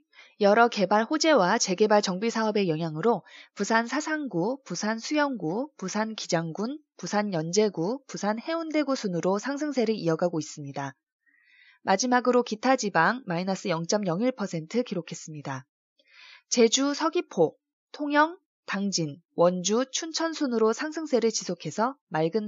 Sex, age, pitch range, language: female, 20-39, 175-280 Hz, Korean